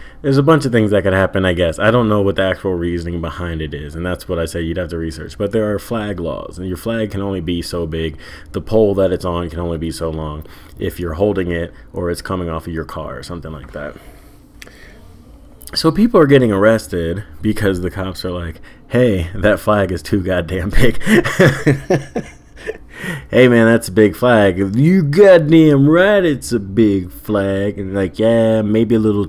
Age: 20-39